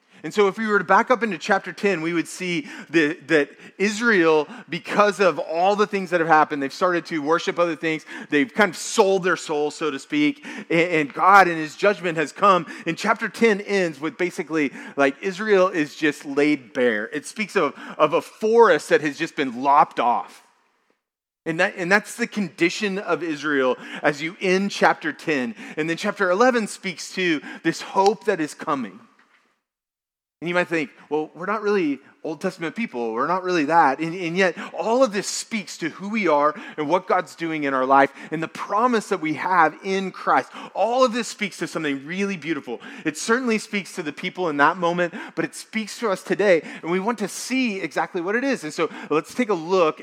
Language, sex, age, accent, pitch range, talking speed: English, male, 30-49, American, 155-205 Hz, 210 wpm